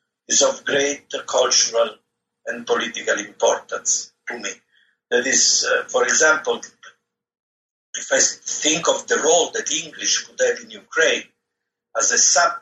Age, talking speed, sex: 50-69, 140 wpm, male